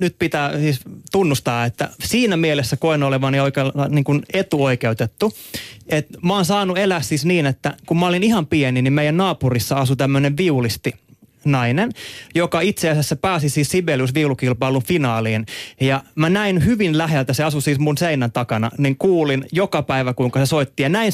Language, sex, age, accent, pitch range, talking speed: Finnish, male, 30-49, native, 130-165 Hz, 165 wpm